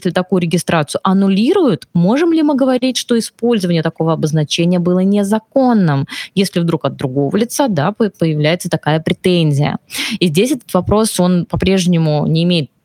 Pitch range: 165-210 Hz